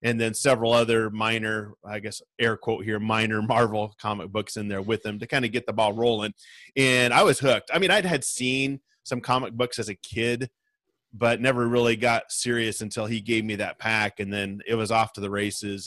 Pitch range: 110-125 Hz